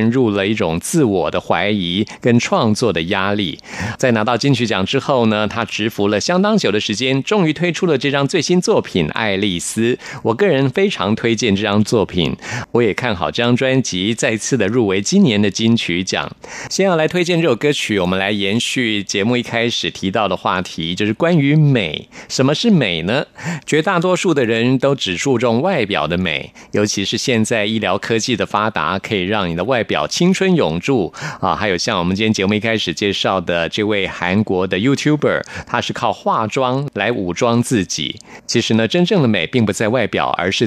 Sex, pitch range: male, 100-135 Hz